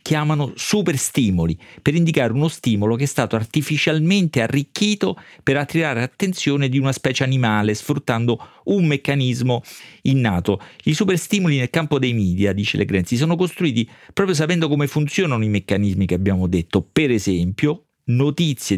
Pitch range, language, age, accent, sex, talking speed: 110-155 Hz, Italian, 40-59, native, male, 140 wpm